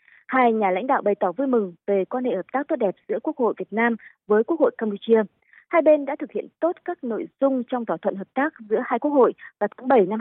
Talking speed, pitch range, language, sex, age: 270 wpm, 210-280 Hz, Vietnamese, female, 20-39